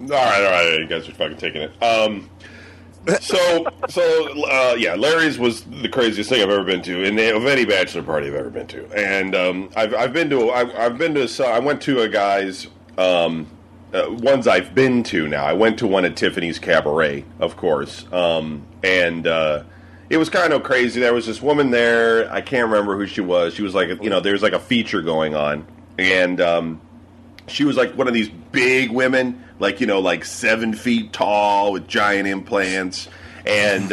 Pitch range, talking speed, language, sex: 90-115 Hz, 205 wpm, English, male